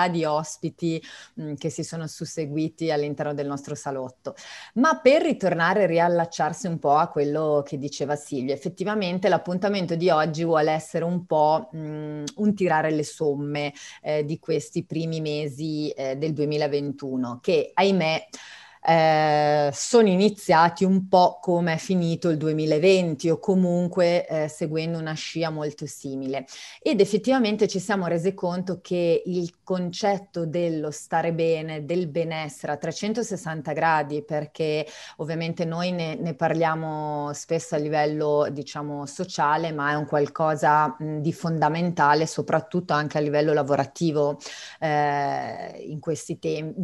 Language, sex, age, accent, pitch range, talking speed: Italian, female, 30-49, native, 150-180 Hz, 135 wpm